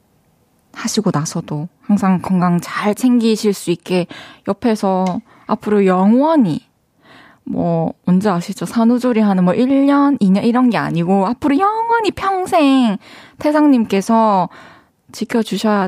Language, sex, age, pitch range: Korean, female, 20-39, 190-250 Hz